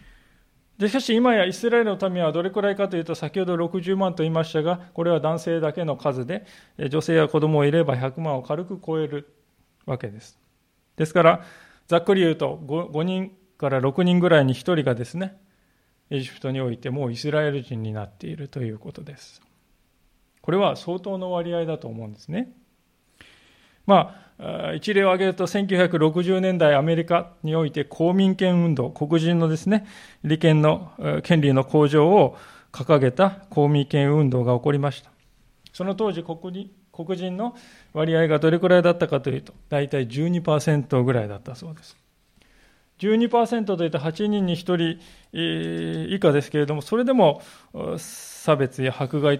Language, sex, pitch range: Japanese, male, 140-185 Hz